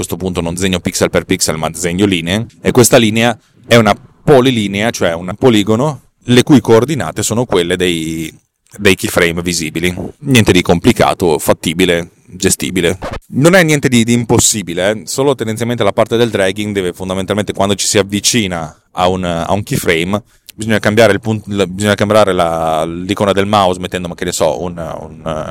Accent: native